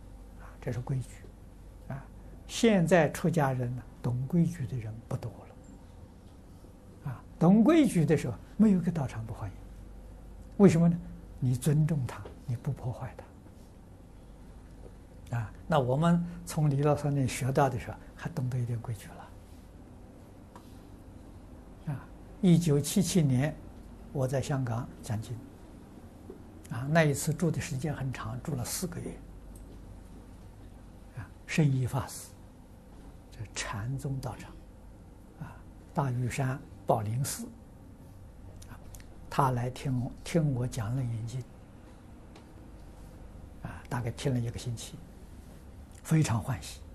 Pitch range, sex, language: 95-135 Hz, male, Chinese